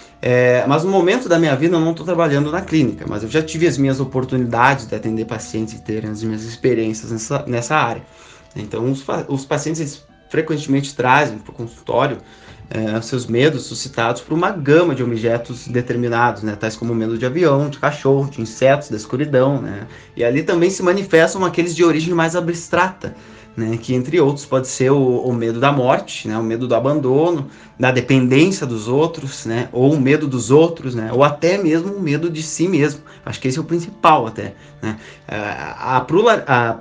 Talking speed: 190 wpm